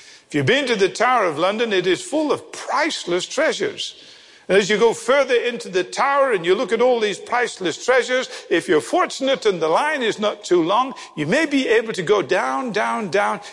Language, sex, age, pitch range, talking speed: English, male, 50-69, 215-330 Hz, 215 wpm